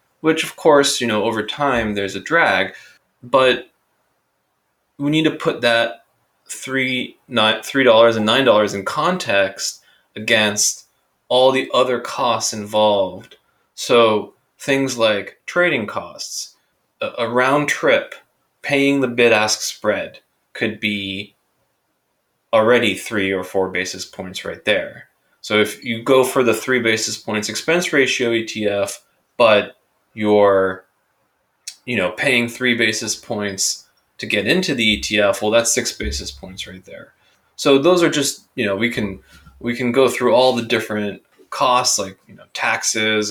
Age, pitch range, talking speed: 20-39, 105-125 Hz, 140 wpm